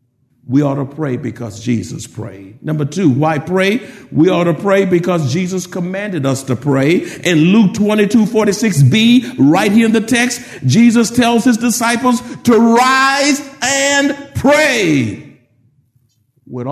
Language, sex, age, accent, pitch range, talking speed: English, male, 50-69, American, 125-205 Hz, 145 wpm